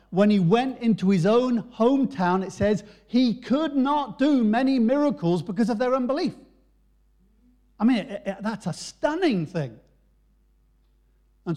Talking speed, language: 135 wpm, English